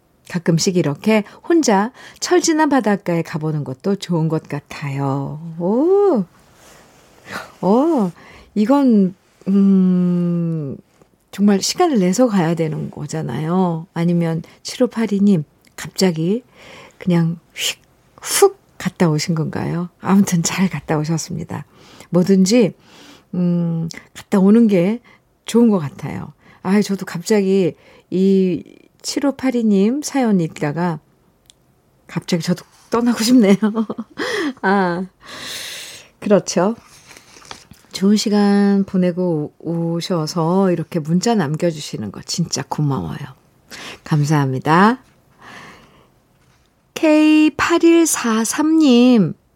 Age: 50-69